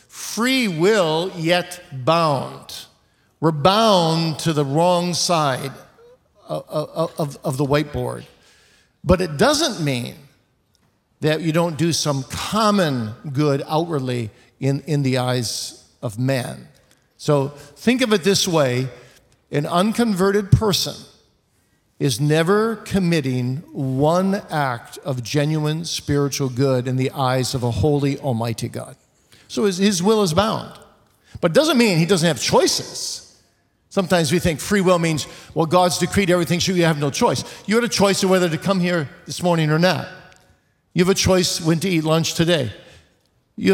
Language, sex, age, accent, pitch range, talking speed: English, male, 50-69, American, 140-185 Hz, 150 wpm